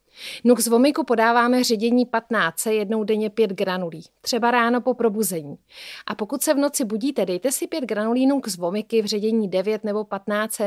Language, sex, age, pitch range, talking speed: Czech, female, 30-49, 210-255 Hz, 180 wpm